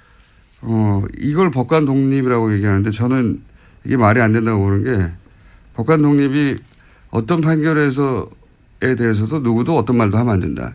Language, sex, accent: Korean, male, native